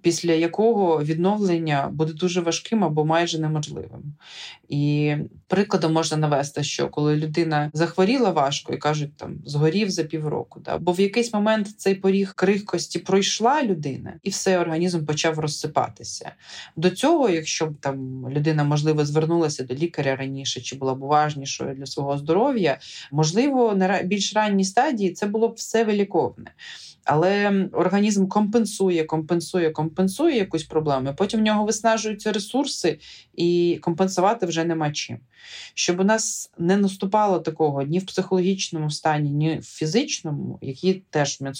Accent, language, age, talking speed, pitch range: native, Ukrainian, 20-39, 145 wpm, 155-195 Hz